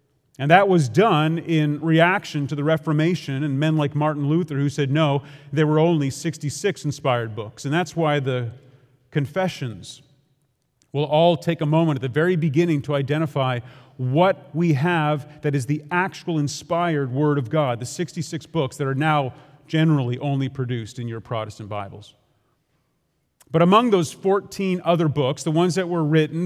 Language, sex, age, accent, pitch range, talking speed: English, male, 40-59, American, 140-175 Hz, 170 wpm